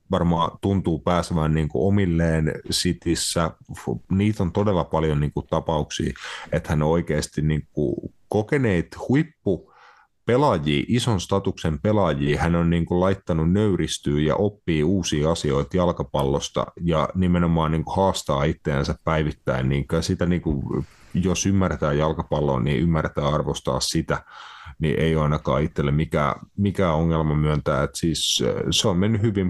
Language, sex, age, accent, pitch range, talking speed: Finnish, male, 30-49, native, 80-100 Hz, 130 wpm